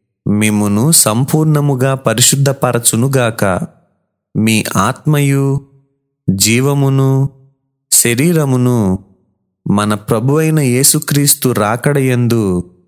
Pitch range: 110-140 Hz